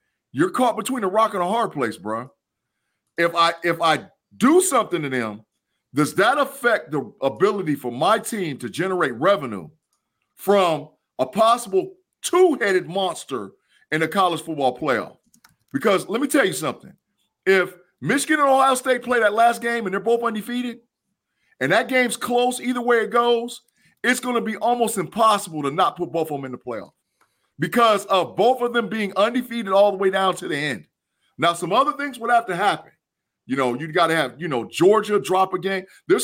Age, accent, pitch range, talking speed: 40-59, American, 165-240 Hz, 190 wpm